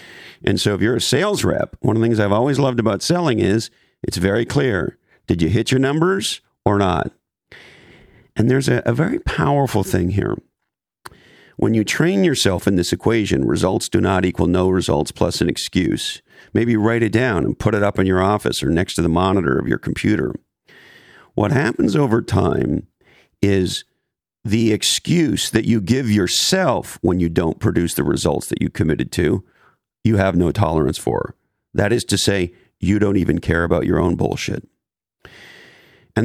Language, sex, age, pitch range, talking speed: English, male, 50-69, 95-125 Hz, 180 wpm